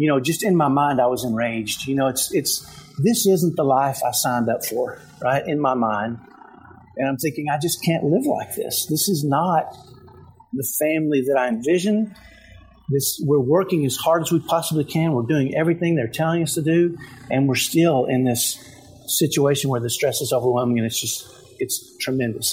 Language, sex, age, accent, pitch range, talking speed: English, male, 50-69, American, 130-165 Hz, 195 wpm